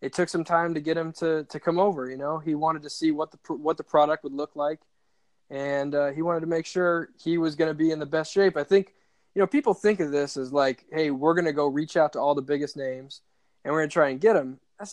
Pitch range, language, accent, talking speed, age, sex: 140-160 Hz, English, American, 290 wpm, 20-39, male